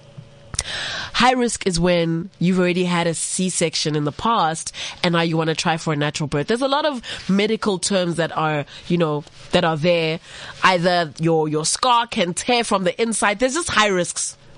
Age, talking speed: 20-39, 200 wpm